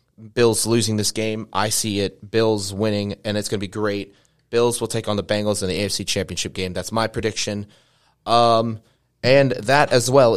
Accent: American